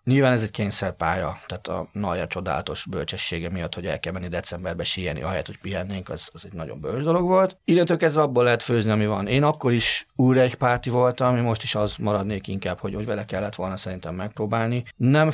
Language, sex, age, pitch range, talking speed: Hungarian, male, 30-49, 100-120 Hz, 210 wpm